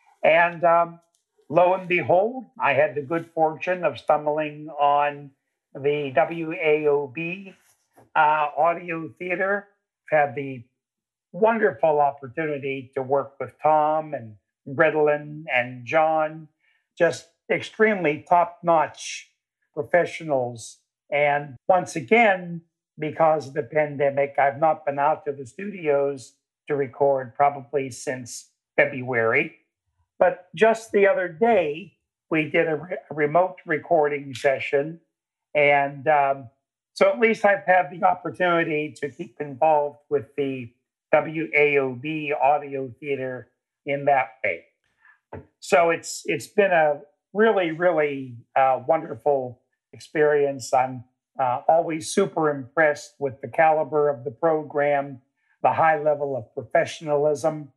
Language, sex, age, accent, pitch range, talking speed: English, male, 60-79, American, 140-165 Hz, 115 wpm